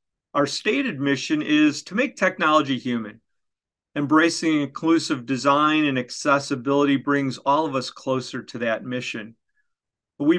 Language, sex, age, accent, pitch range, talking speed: English, male, 40-59, American, 130-165 Hz, 125 wpm